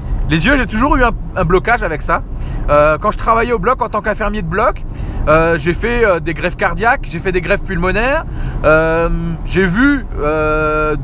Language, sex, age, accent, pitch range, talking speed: French, male, 30-49, French, 155-240 Hz, 200 wpm